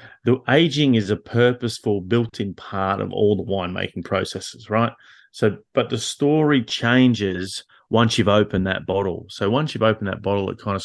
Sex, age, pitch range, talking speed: male, 30-49, 90-110 Hz, 175 wpm